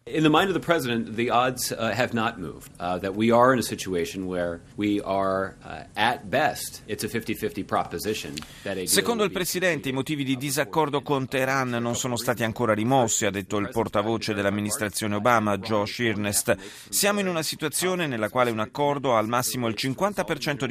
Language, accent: Italian, native